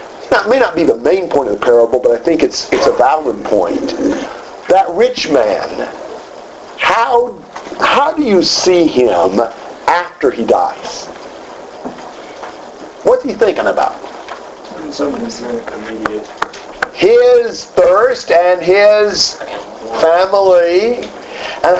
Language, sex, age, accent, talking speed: English, male, 50-69, American, 110 wpm